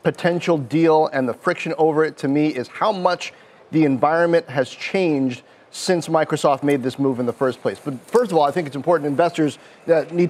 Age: 30-49